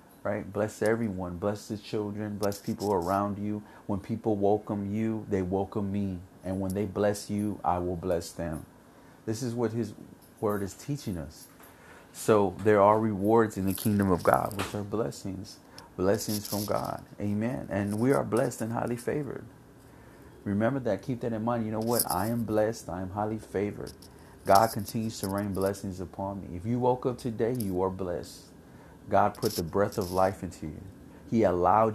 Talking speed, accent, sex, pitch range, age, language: 185 wpm, American, male, 95-110 Hz, 30-49, English